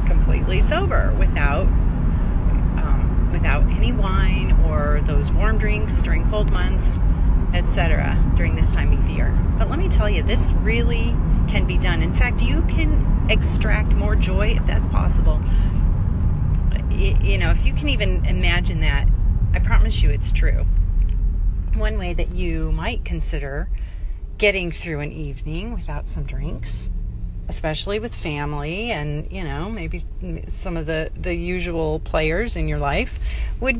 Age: 40-59